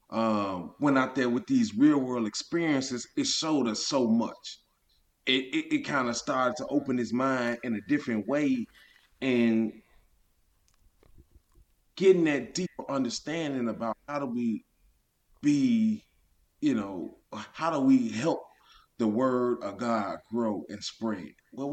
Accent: American